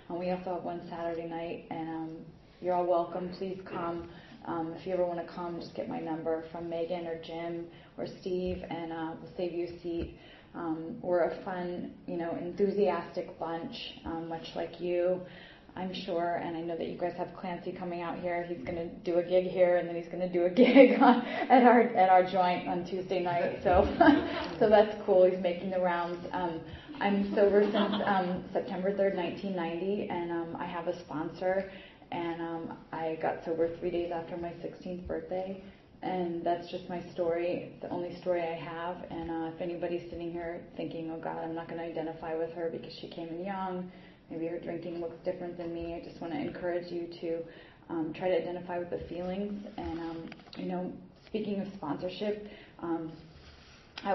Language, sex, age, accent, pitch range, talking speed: English, female, 20-39, American, 170-185 Hz, 200 wpm